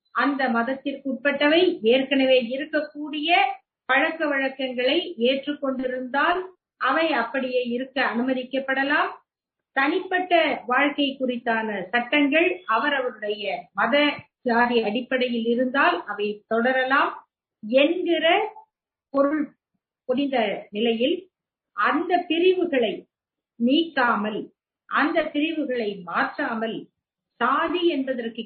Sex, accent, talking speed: female, native, 65 wpm